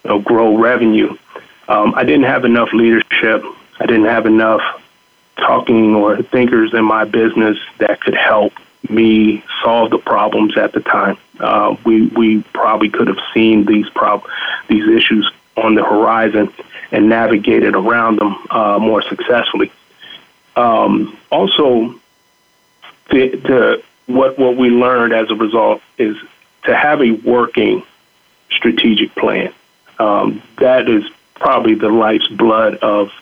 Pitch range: 110-130 Hz